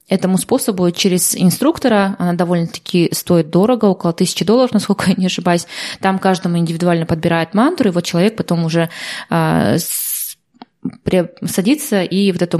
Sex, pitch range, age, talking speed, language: female, 175-210 Hz, 20-39, 145 wpm, Russian